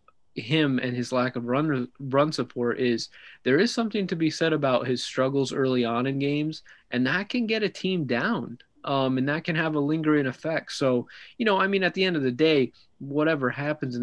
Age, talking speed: 20-39, 220 wpm